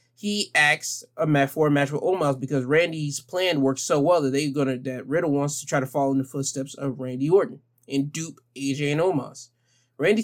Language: English